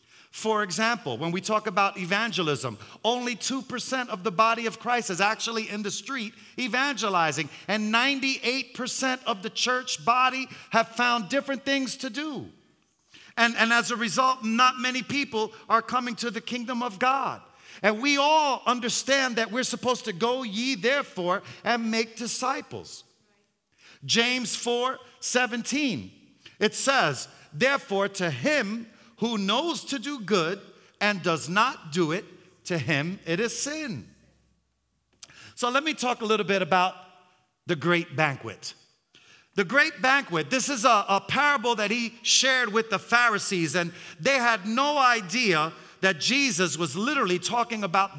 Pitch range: 195-255 Hz